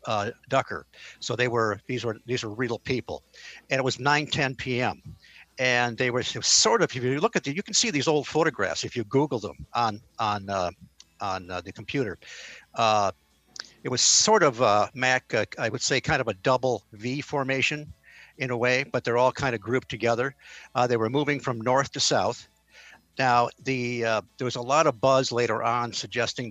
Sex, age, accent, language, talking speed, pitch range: male, 60-79, American, English, 205 wpm, 115-135 Hz